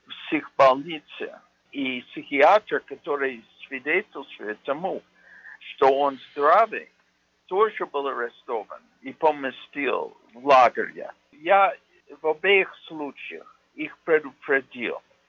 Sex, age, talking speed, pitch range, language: male, 60-79, 90 wpm, 135-180 Hz, Russian